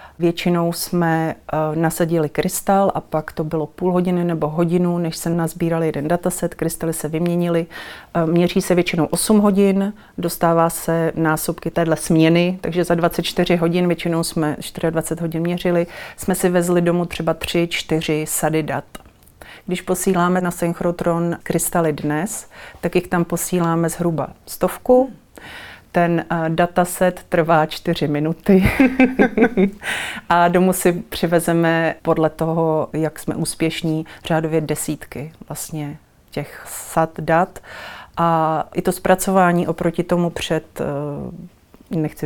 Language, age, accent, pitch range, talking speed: Czech, 40-59, native, 160-175 Hz, 120 wpm